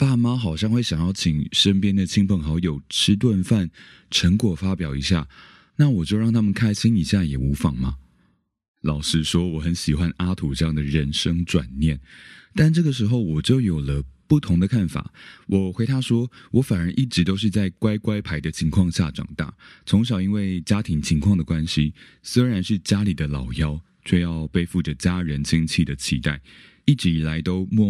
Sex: male